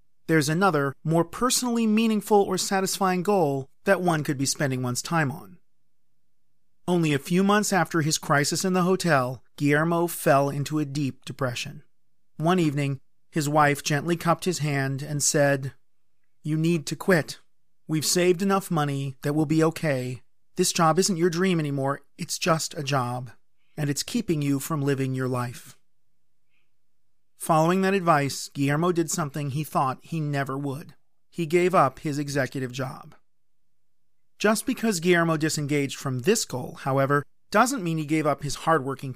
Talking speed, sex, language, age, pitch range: 160 wpm, male, English, 40-59, 140-180 Hz